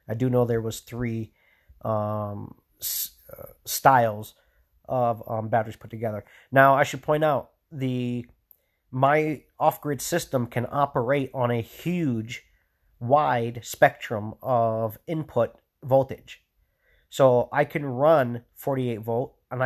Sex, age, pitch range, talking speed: male, 40-59, 115-135 Hz, 125 wpm